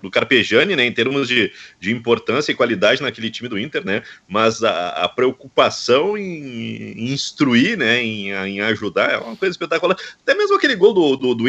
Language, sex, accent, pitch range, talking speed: Portuguese, male, Brazilian, 115-190 Hz, 195 wpm